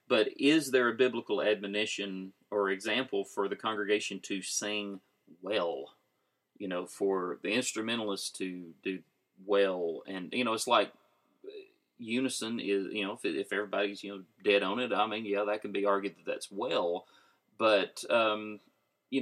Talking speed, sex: 160 wpm, male